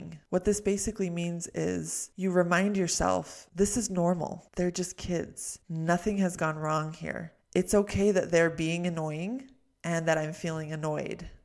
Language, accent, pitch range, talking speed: English, American, 160-185 Hz, 155 wpm